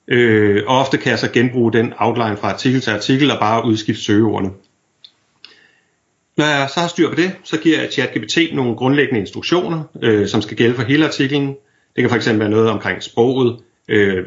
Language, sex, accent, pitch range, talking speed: Danish, male, native, 110-140 Hz, 190 wpm